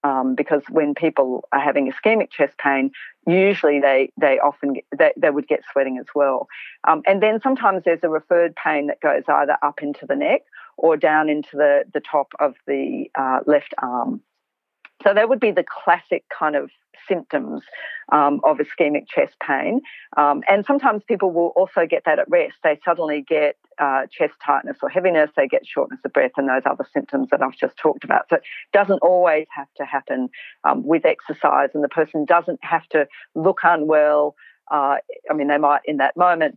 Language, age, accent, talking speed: English, 40-59, Australian, 195 wpm